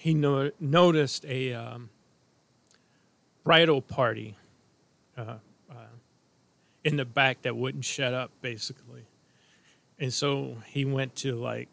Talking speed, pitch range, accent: 115 wpm, 130-185 Hz, American